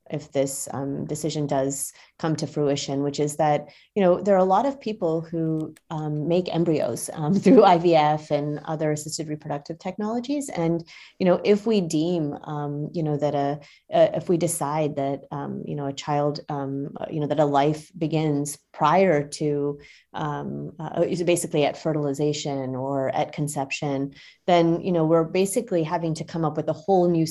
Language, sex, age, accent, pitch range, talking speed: English, female, 30-49, American, 145-180 Hz, 180 wpm